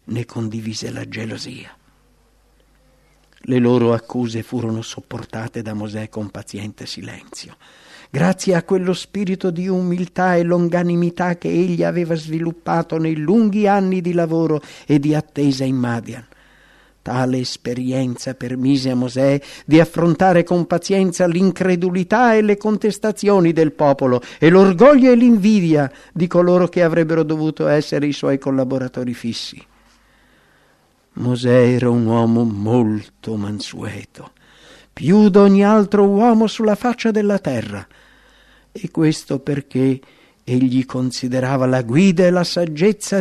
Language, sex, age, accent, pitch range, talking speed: English, male, 50-69, Italian, 120-180 Hz, 125 wpm